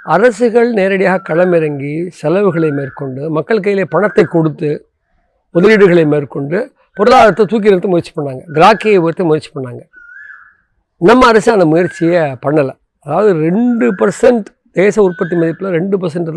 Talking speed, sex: 120 wpm, male